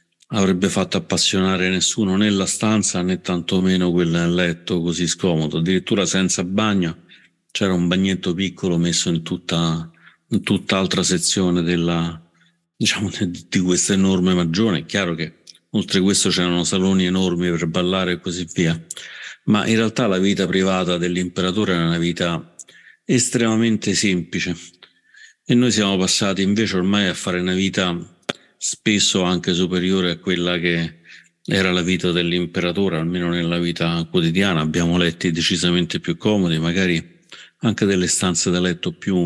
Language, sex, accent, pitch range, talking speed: Italian, male, native, 85-95 Hz, 140 wpm